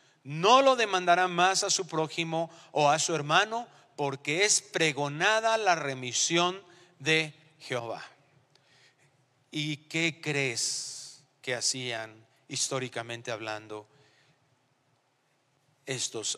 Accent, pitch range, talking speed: Mexican, 135-185 Hz, 95 wpm